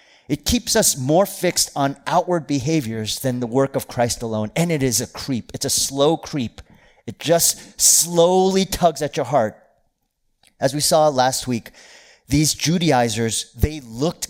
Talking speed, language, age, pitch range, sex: 165 wpm, English, 30-49, 120-175 Hz, male